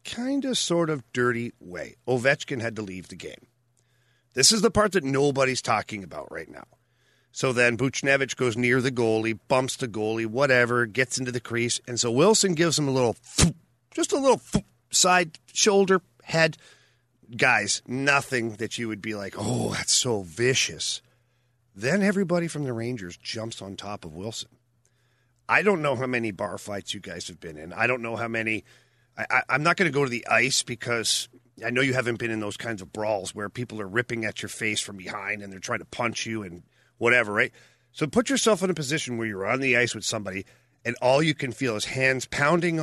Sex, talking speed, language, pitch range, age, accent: male, 205 wpm, English, 115-140 Hz, 40-59, American